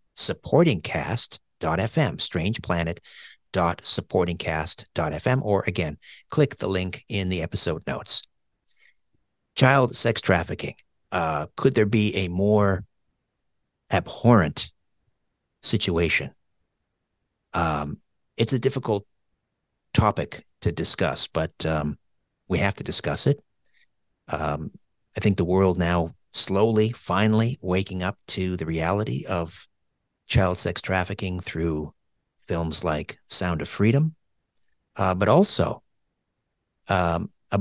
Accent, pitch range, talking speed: American, 85-110 Hz, 100 wpm